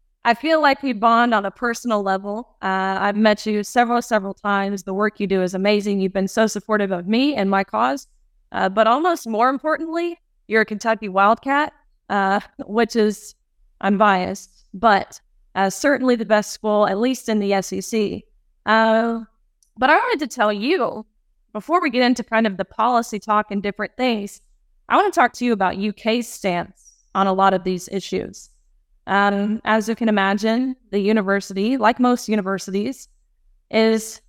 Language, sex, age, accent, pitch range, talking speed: English, female, 20-39, American, 195-235 Hz, 175 wpm